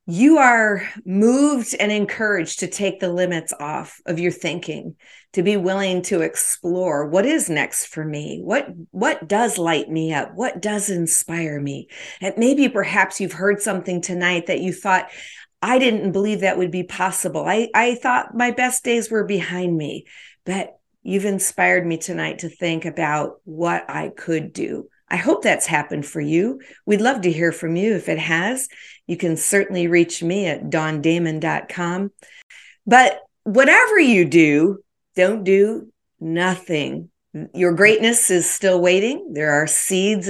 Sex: female